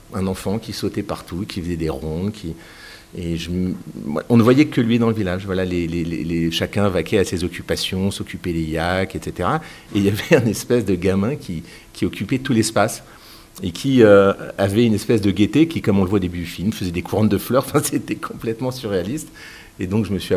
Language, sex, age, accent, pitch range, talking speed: French, male, 50-69, French, 85-110 Hz, 225 wpm